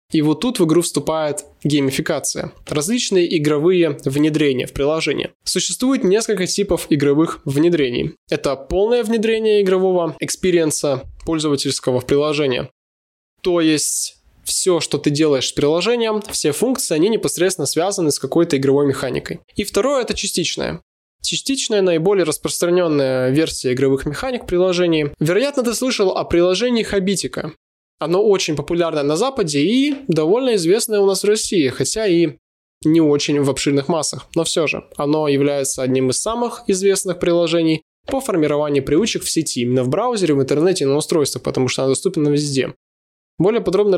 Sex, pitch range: male, 145-195 Hz